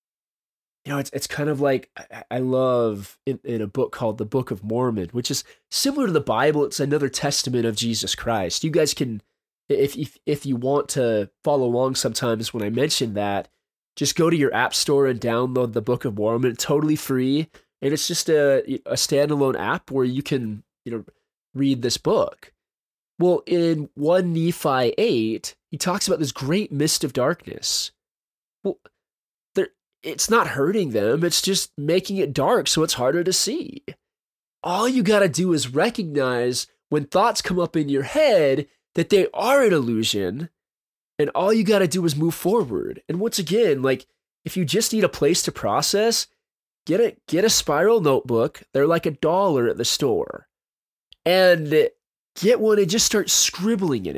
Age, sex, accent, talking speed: 20-39, male, American, 180 wpm